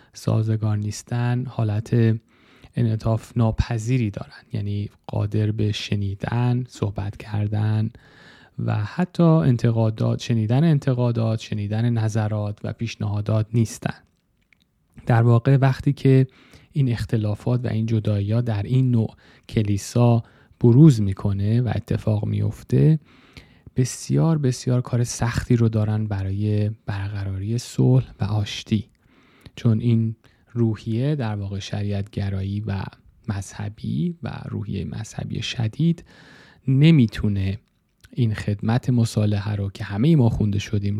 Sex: male